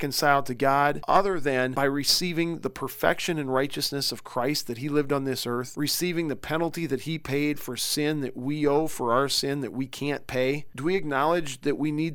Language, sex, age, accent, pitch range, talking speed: English, male, 40-59, American, 130-160 Hz, 210 wpm